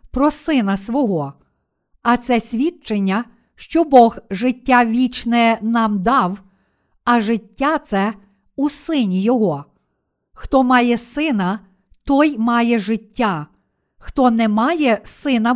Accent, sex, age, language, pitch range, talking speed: native, female, 50-69, Ukrainian, 210-255 Hz, 110 wpm